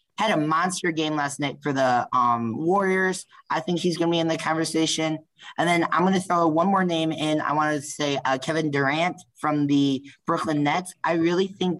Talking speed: 220 wpm